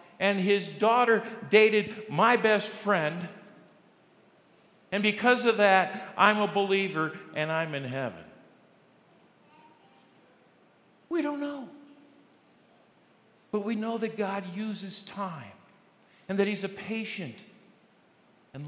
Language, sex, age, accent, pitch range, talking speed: English, male, 50-69, American, 140-200 Hz, 110 wpm